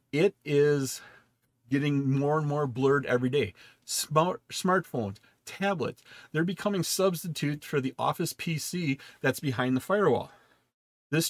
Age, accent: 40-59, American